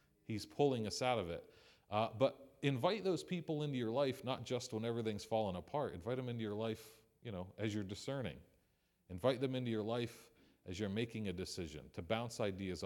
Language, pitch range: English, 95-125 Hz